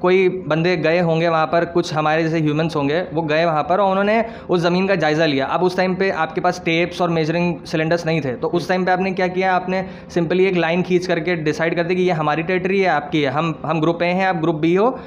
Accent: native